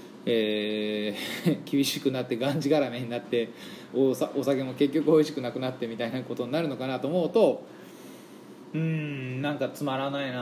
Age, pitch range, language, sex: 20-39, 125-185 Hz, Japanese, male